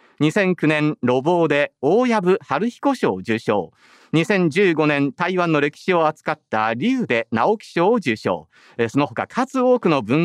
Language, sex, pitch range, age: Japanese, male, 135-220 Hz, 40-59